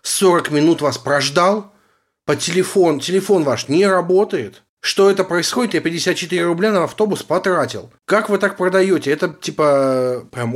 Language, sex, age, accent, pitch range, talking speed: Russian, male, 30-49, native, 145-195 Hz, 150 wpm